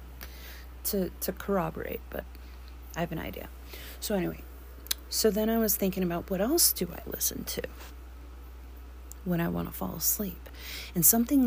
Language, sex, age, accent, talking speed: English, female, 30-49, American, 155 wpm